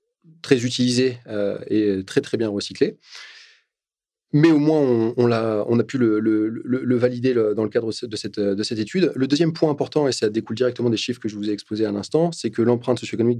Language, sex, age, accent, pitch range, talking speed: French, male, 30-49, French, 105-135 Hz, 235 wpm